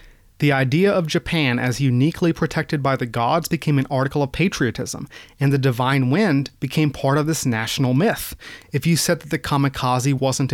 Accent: American